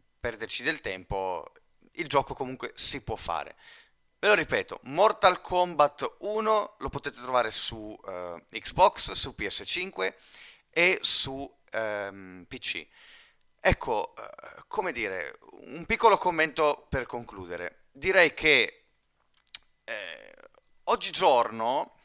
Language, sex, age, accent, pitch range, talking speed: Italian, male, 30-49, native, 110-155 Hz, 100 wpm